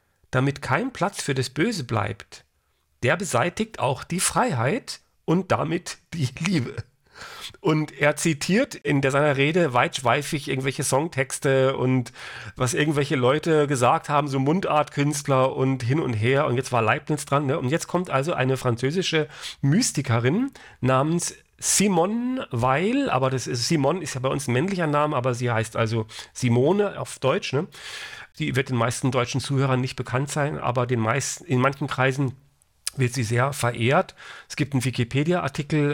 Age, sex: 40-59, male